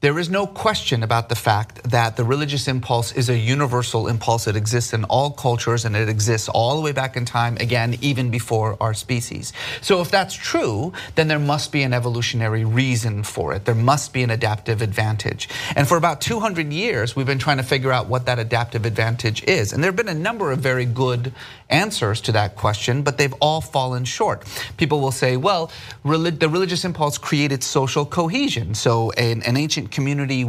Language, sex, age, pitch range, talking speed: English, male, 30-49, 115-145 Hz, 200 wpm